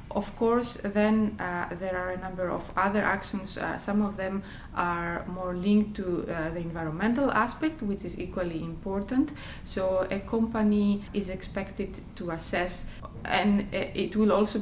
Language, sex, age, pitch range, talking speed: English, female, 20-39, 170-200 Hz, 155 wpm